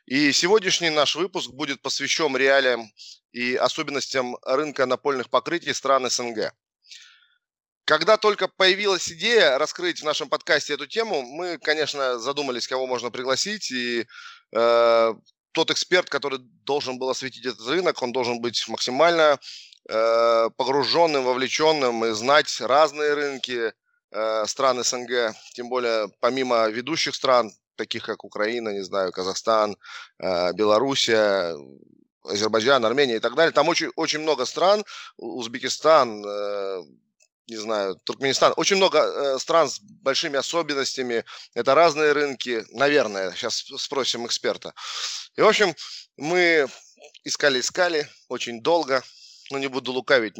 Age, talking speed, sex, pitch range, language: 20-39, 125 wpm, male, 120-165 Hz, Russian